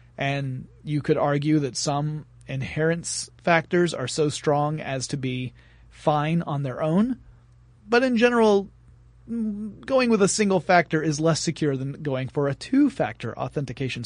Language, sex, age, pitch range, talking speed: English, male, 30-49, 135-185 Hz, 150 wpm